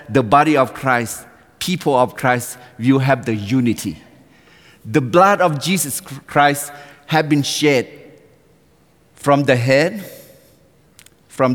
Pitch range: 120-150 Hz